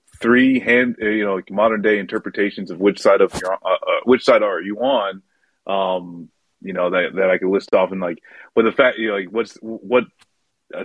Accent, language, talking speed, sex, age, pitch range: American, English, 220 wpm, male, 30-49, 95-115 Hz